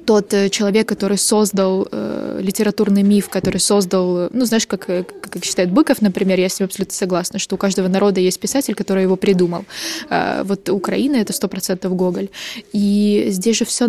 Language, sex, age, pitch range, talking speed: Russian, female, 20-39, 195-225 Hz, 180 wpm